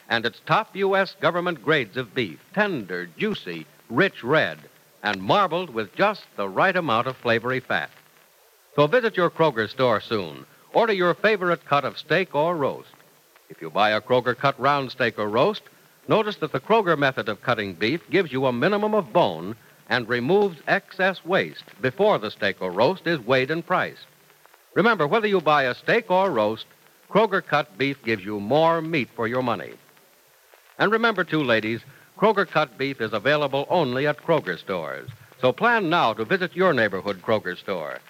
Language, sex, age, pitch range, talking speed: English, male, 60-79, 125-185 Hz, 180 wpm